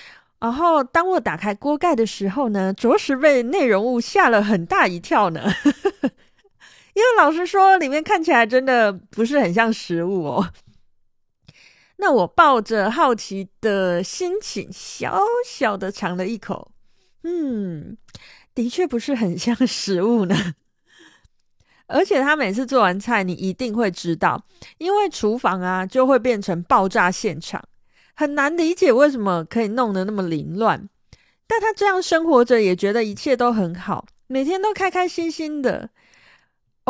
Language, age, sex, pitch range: Chinese, 30-49, female, 195-290 Hz